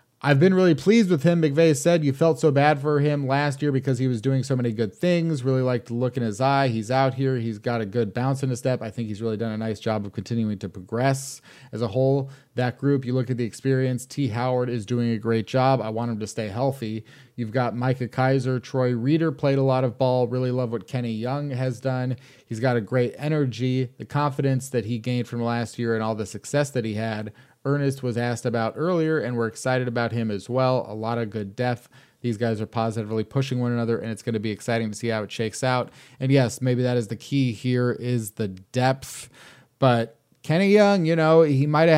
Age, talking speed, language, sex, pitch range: 30-49, 245 wpm, English, male, 115-135 Hz